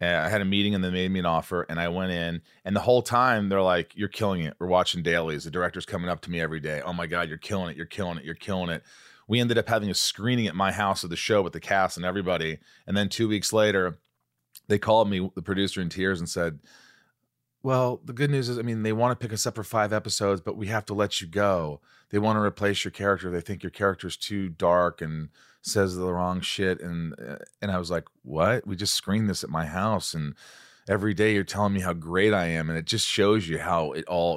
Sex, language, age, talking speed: male, English, 30-49, 260 wpm